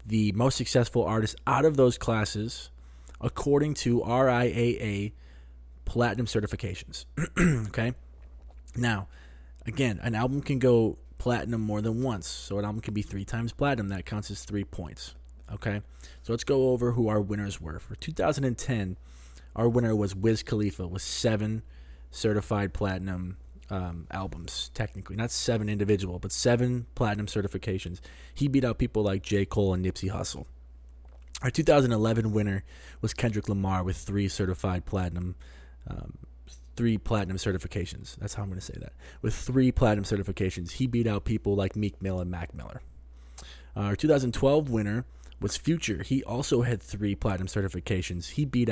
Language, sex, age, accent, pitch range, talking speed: English, male, 20-39, American, 90-115 Hz, 160 wpm